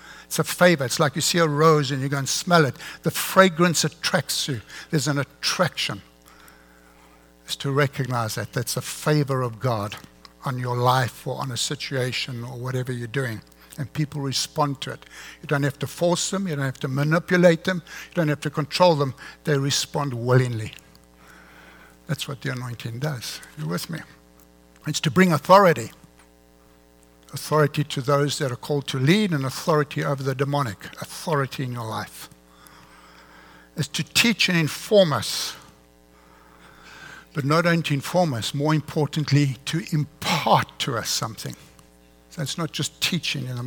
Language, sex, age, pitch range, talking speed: English, male, 60-79, 110-155 Hz, 170 wpm